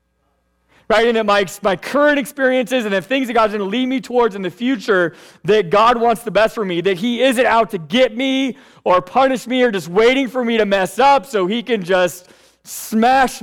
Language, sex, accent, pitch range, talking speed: English, male, American, 165-235 Hz, 225 wpm